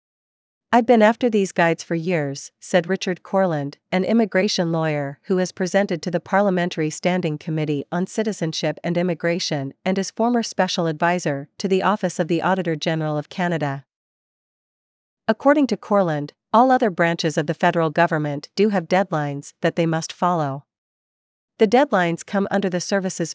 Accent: American